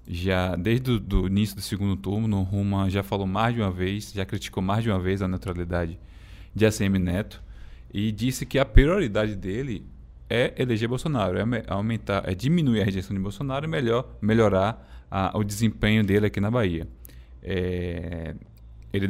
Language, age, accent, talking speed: Portuguese, 20-39, Brazilian, 175 wpm